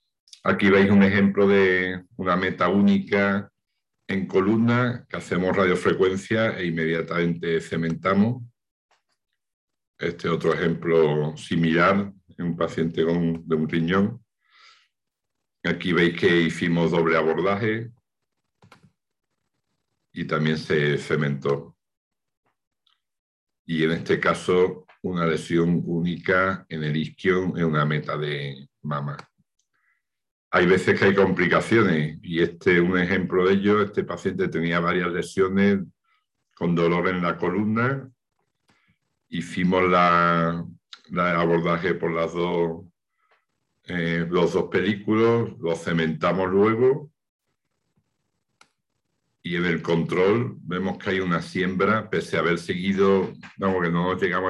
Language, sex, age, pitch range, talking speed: Spanish, male, 50-69, 85-95 Hz, 115 wpm